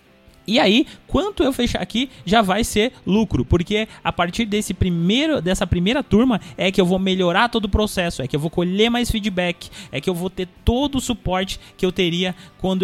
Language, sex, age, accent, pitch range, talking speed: Portuguese, male, 20-39, Brazilian, 170-220 Hz, 210 wpm